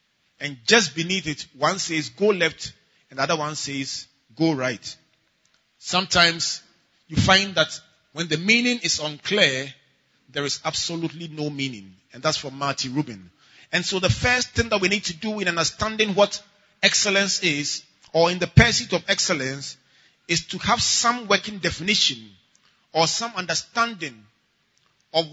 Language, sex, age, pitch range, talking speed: English, male, 30-49, 155-215 Hz, 155 wpm